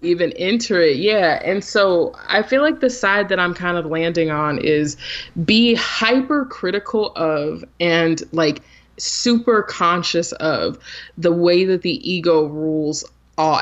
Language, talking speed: English, 150 wpm